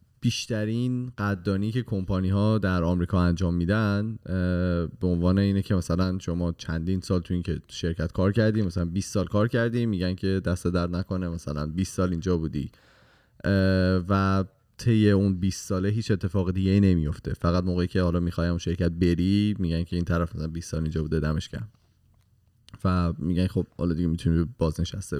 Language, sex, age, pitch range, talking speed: Persian, male, 20-39, 90-110 Hz, 170 wpm